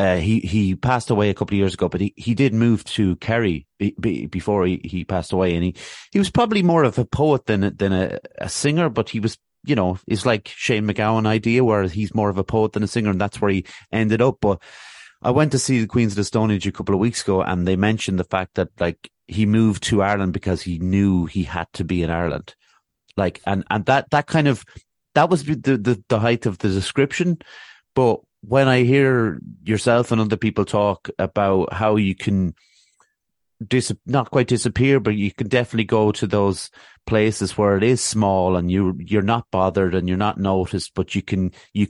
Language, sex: English, male